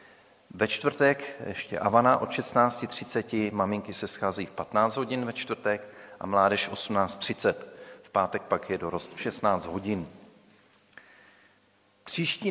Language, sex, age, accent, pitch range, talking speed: Czech, male, 40-59, native, 95-120 Hz, 125 wpm